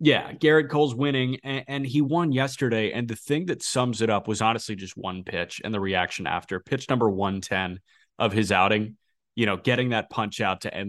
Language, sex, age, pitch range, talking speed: English, male, 30-49, 105-130 Hz, 215 wpm